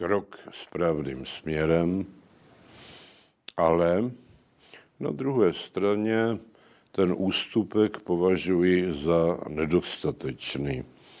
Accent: native